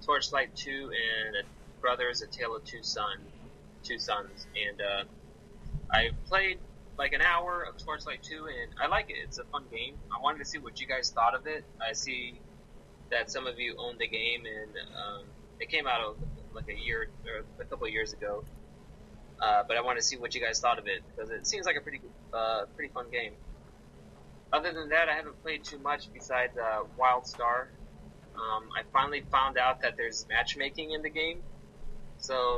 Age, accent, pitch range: 20-39, American, 105-165 Hz